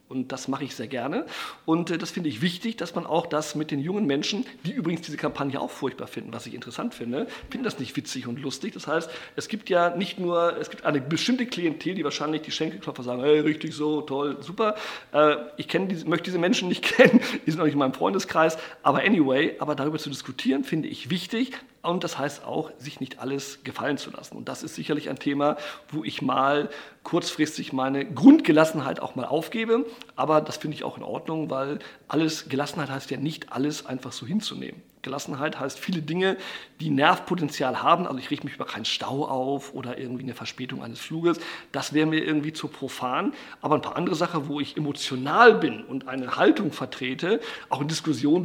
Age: 50-69